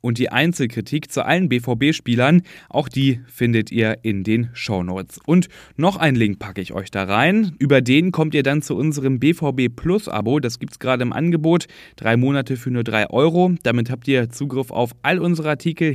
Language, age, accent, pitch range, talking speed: German, 10-29, German, 115-150 Hz, 190 wpm